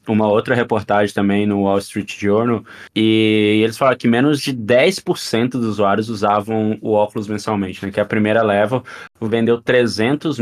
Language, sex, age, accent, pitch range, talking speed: Portuguese, male, 20-39, Brazilian, 105-120 Hz, 160 wpm